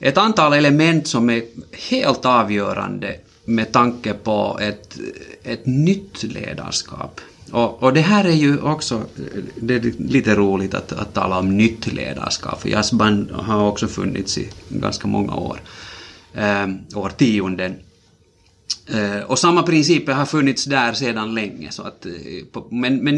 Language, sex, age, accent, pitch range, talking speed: Swedish, male, 30-49, Finnish, 105-140 Hz, 140 wpm